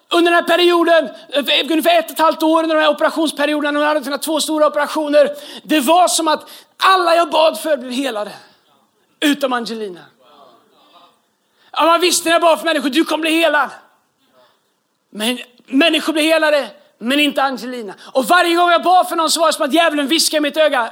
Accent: native